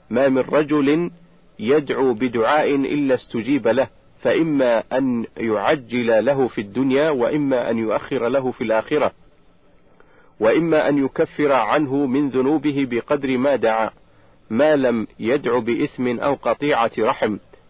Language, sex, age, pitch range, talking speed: Arabic, male, 50-69, 120-150 Hz, 120 wpm